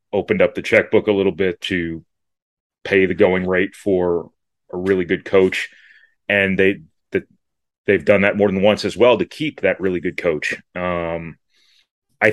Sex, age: male, 30-49